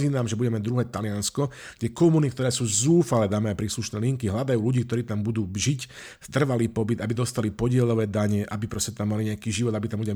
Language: Slovak